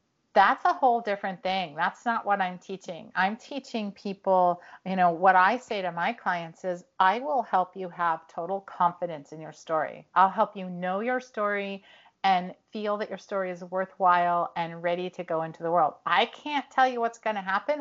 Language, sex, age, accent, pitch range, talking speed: English, female, 40-59, American, 180-215 Hz, 200 wpm